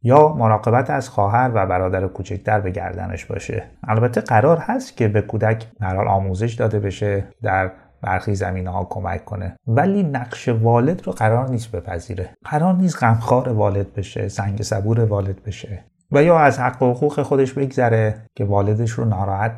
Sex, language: male, Persian